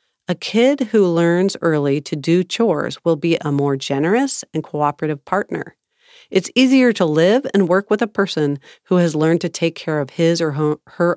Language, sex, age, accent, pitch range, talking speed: English, female, 50-69, American, 150-195 Hz, 190 wpm